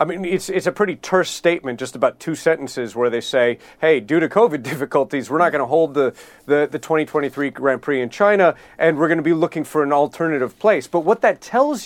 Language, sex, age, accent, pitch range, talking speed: English, male, 40-59, American, 145-185 Hz, 240 wpm